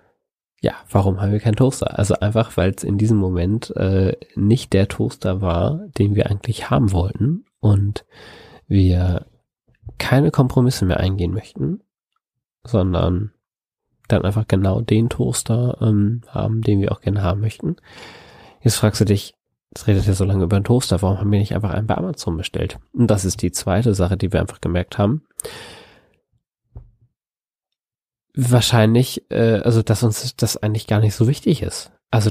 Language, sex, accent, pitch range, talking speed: German, male, German, 100-115 Hz, 165 wpm